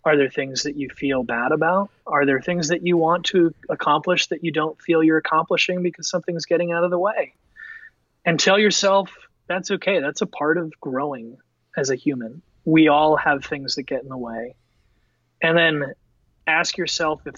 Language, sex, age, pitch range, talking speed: English, male, 30-49, 130-175 Hz, 195 wpm